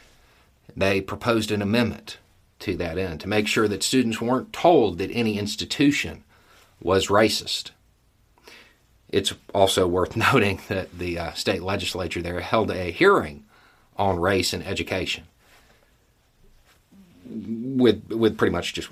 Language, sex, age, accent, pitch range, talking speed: English, male, 50-69, American, 95-115 Hz, 130 wpm